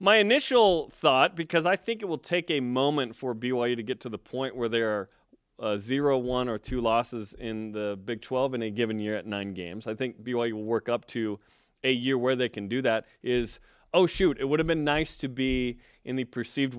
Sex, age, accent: male, 30-49, American